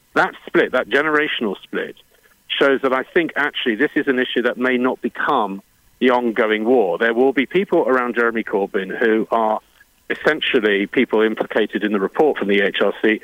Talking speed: 175 wpm